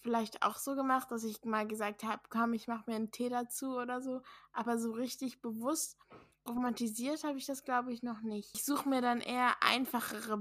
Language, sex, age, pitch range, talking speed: German, female, 10-29, 215-245 Hz, 210 wpm